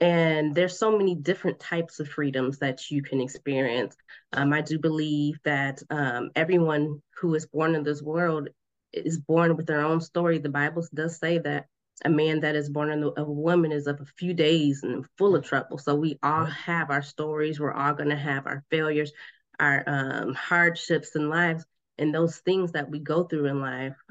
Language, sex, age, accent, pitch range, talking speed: English, female, 20-39, American, 145-160 Hz, 200 wpm